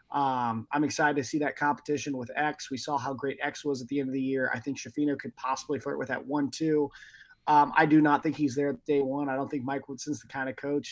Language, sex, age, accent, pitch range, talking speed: English, male, 20-39, American, 130-145 Hz, 275 wpm